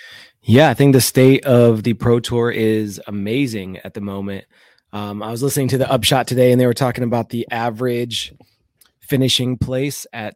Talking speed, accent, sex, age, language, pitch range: 185 wpm, American, male, 20-39, English, 105-125 Hz